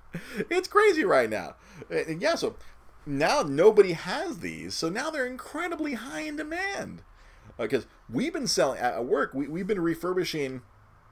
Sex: male